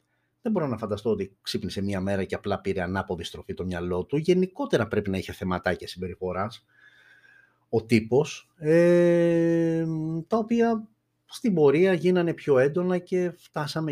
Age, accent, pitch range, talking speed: 30-49, native, 95-150 Hz, 145 wpm